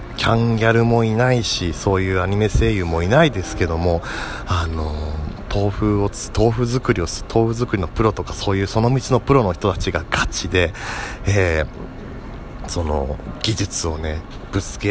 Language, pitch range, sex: Japanese, 85-110 Hz, male